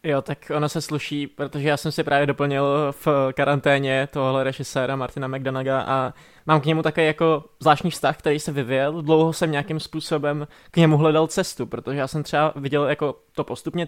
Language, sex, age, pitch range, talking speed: Czech, male, 20-39, 150-170 Hz, 190 wpm